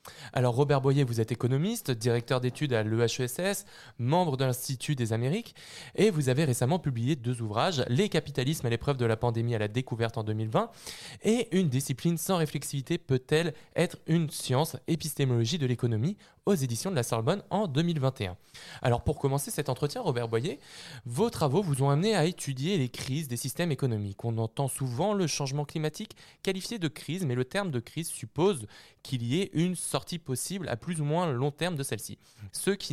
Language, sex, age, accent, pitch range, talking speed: French, male, 20-39, French, 120-165 Hz, 190 wpm